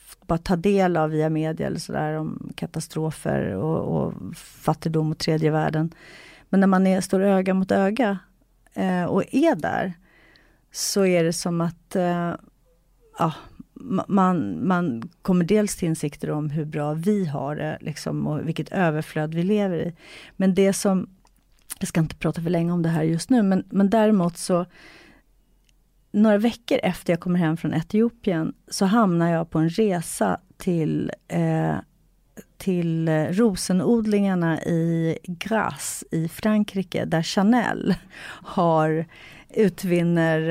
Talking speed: 145 wpm